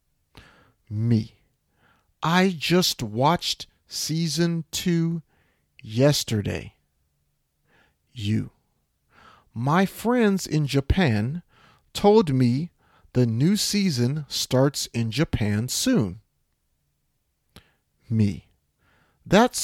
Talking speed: 70 wpm